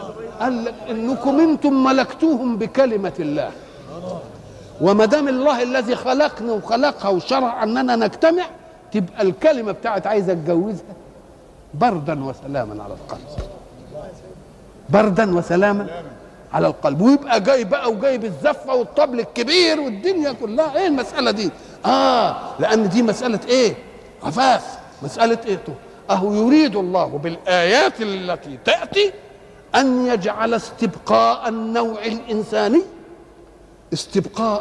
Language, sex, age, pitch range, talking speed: Arabic, male, 50-69, 200-290 Hz, 100 wpm